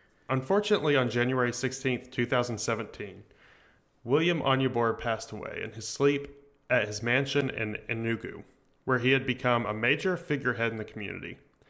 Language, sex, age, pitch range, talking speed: English, male, 30-49, 110-140 Hz, 140 wpm